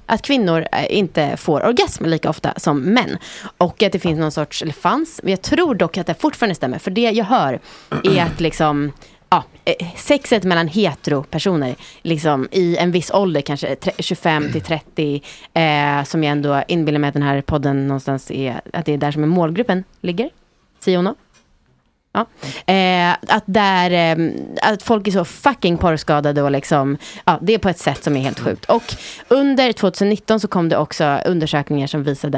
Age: 30-49